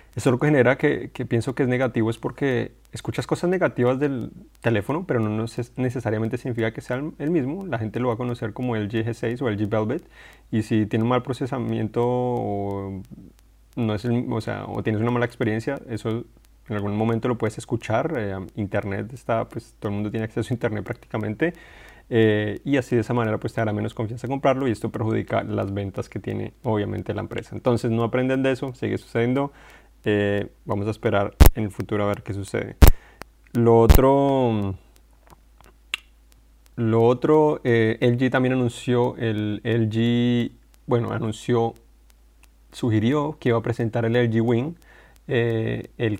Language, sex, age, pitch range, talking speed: Spanish, male, 30-49, 110-125 Hz, 175 wpm